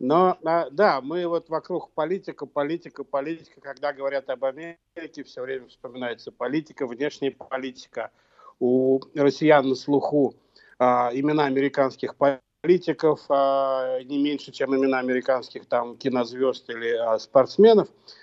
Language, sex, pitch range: Russian, male, 130-155 Hz